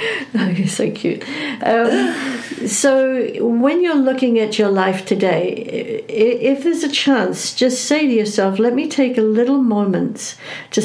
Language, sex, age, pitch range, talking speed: English, female, 60-79, 200-235 Hz, 155 wpm